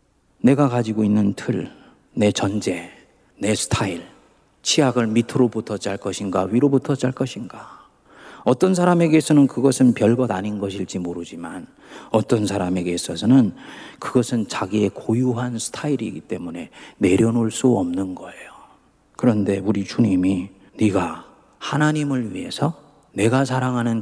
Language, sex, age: Korean, male, 40-59